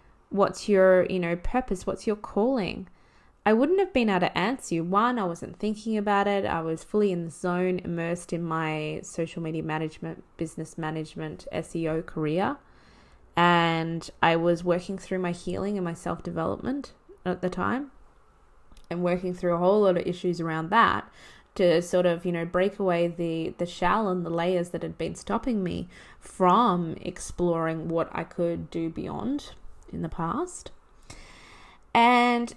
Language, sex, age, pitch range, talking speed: English, female, 20-39, 170-200 Hz, 165 wpm